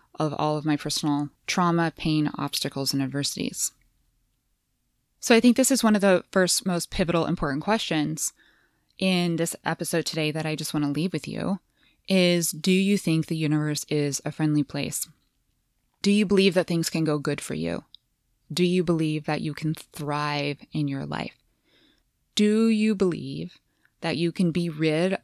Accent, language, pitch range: American, English, 145-180 Hz